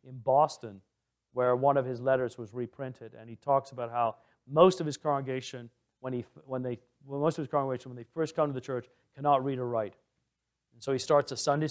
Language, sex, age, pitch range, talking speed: English, male, 50-69, 125-150 Hz, 225 wpm